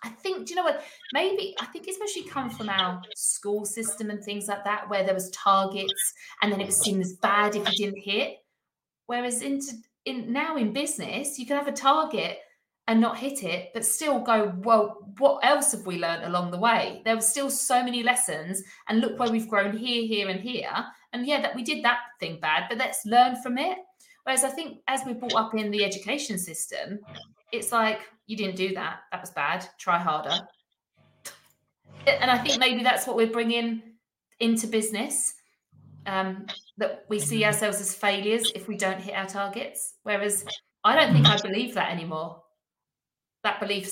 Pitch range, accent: 195-250 Hz, British